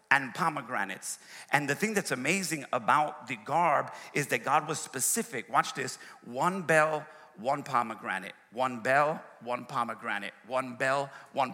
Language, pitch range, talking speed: English, 130-180 Hz, 145 wpm